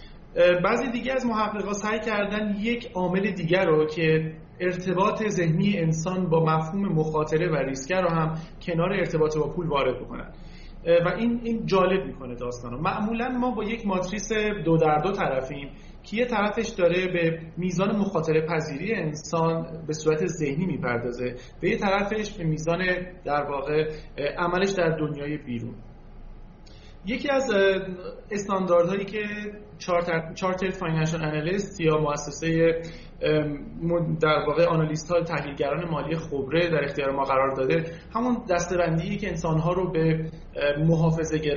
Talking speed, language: 135 wpm, Persian